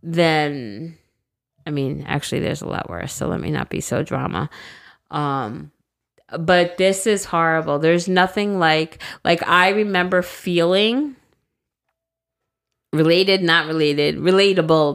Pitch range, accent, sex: 155-185 Hz, American, female